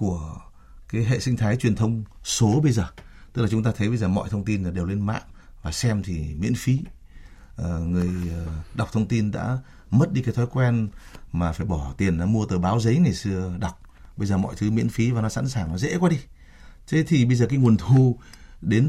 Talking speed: 235 wpm